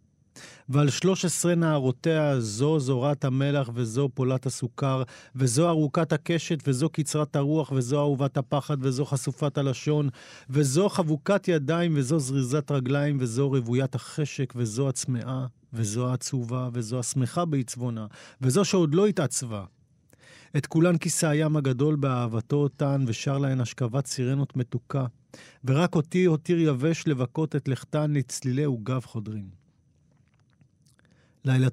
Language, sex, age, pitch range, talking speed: Hebrew, male, 40-59, 125-150 Hz, 125 wpm